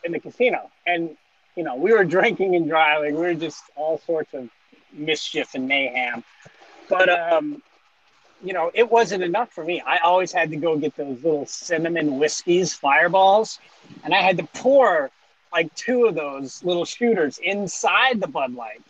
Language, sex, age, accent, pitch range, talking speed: English, male, 30-49, American, 150-230 Hz, 175 wpm